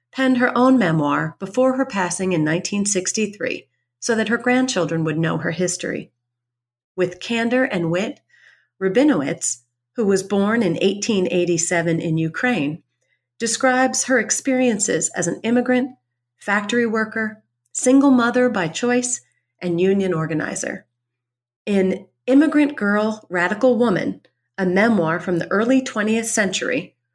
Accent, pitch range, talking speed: American, 165-225 Hz, 125 wpm